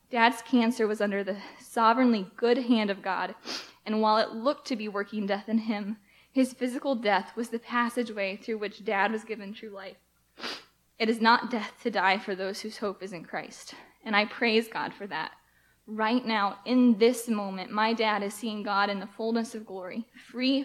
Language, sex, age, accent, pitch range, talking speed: English, female, 10-29, American, 200-235 Hz, 200 wpm